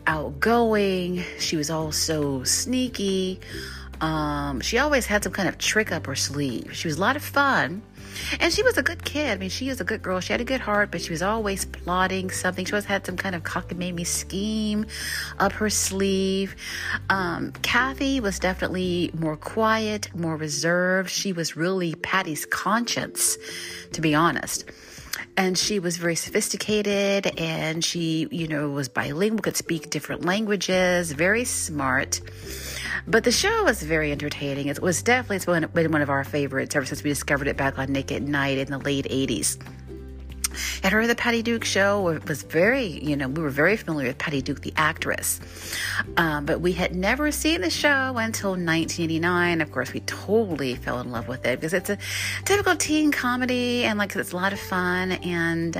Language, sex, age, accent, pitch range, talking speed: English, female, 40-59, American, 145-205 Hz, 185 wpm